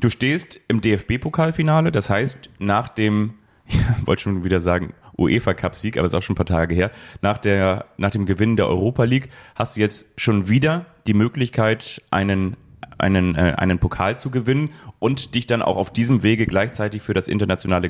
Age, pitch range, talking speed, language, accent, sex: 30-49, 100-120 Hz, 195 wpm, German, German, male